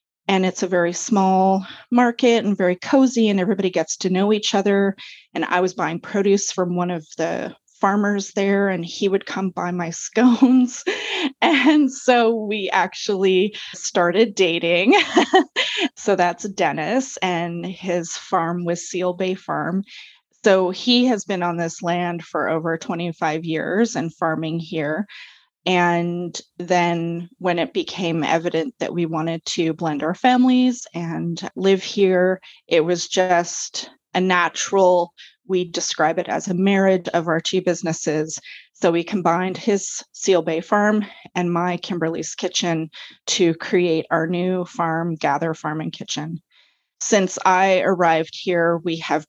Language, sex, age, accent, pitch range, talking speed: English, female, 20-39, American, 170-200 Hz, 145 wpm